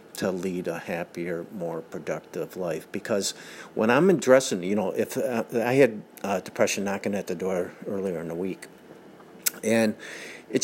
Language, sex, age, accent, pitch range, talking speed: English, male, 50-69, American, 95-110 Hz, 165 wpm